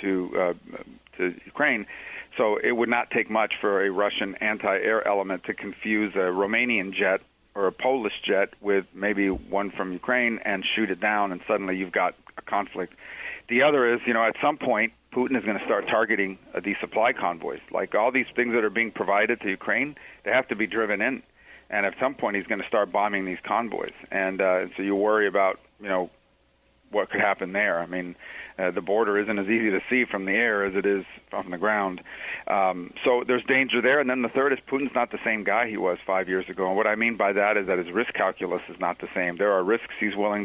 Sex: male